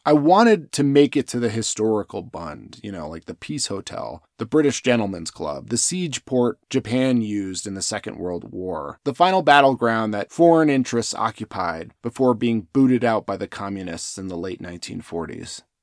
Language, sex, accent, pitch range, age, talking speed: English, male, American, 105-155 Hz, 20-39, 180 wpm